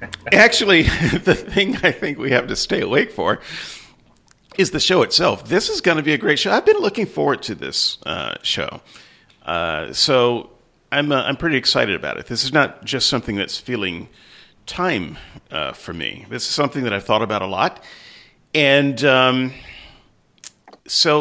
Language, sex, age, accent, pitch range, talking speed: English, male, 40-59, American, 110-185 Hz, 180 wpm